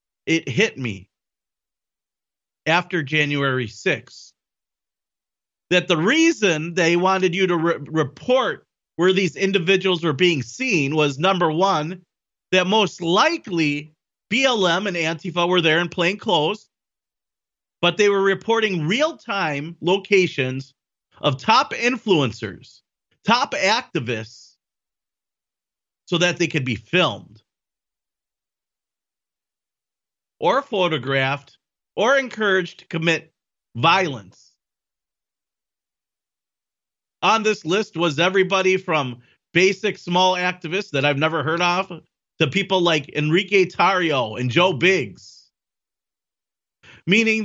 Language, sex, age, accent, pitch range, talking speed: English, male, 40-59, American, 155-195 Hz, 100 wpm